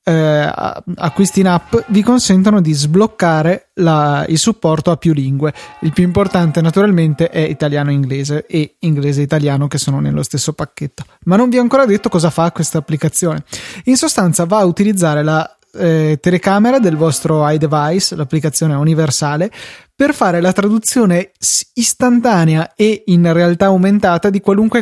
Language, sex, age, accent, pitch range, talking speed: Italian, male, 20-39, native, 155-195 Hz, 155 wpm